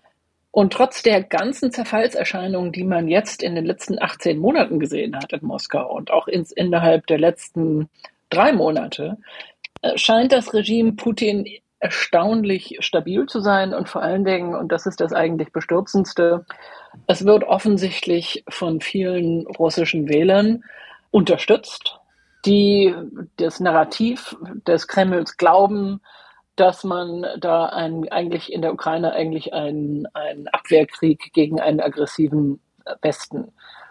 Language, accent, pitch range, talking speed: German, German, 165-210 Hz, 125 wpm